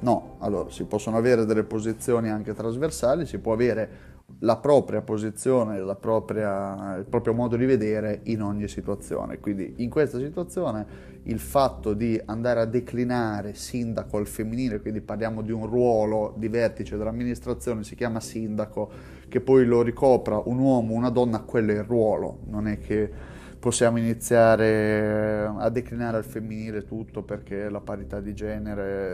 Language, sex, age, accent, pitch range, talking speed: Italian, male, 30-49, native, 105-115 Hz, 160 wpm